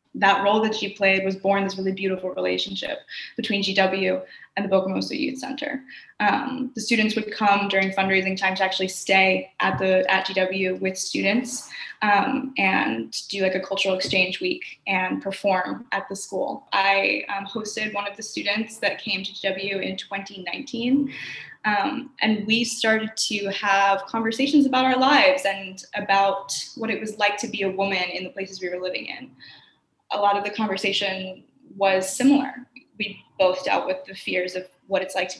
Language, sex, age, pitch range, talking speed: English, female, 20-39, 190-235 Hz, 180 wpm